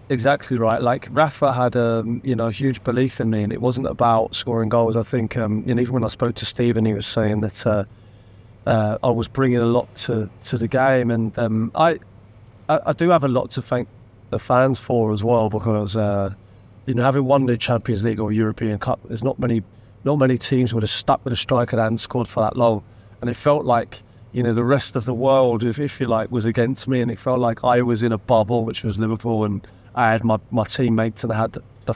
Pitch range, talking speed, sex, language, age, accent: 110-125 Hz, 240 wpm, male, English, 30-49, British